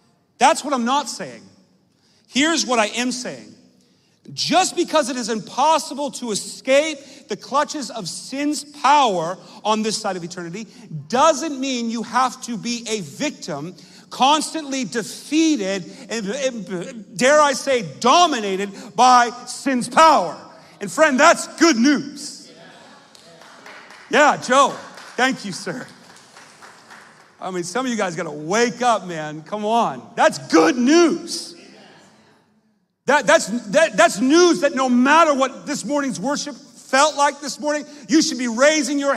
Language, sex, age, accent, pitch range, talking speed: English, male, 40-59, American, 215-290 Hz, 140 wpm